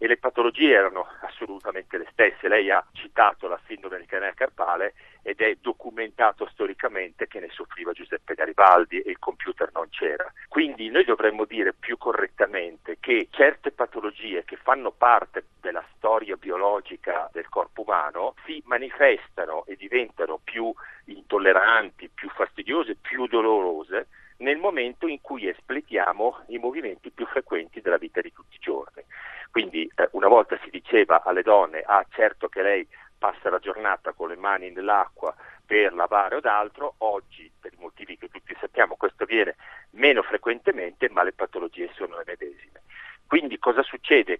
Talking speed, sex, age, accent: 155 wpm, male, 50-69, native